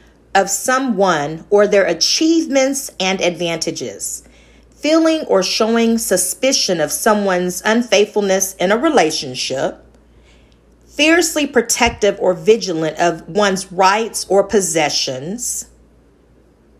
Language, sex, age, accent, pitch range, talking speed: English, female, 40-59, American, 165-220 Hz, 95 wpm